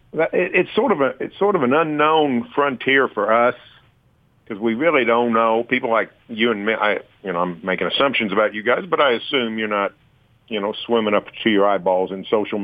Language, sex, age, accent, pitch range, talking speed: English, male, 50-69, American, 105-145 Hz, 215 wpm